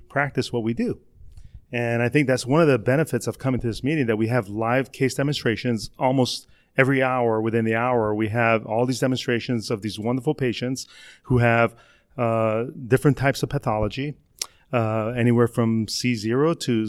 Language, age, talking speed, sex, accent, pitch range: English, 30-49, 180 wpm, male, American, 115-135 Hz